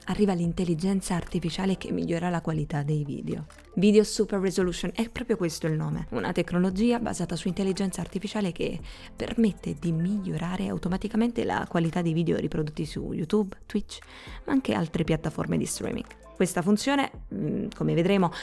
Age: 20-39